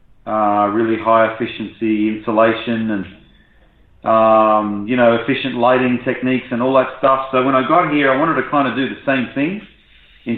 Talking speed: 180 wpm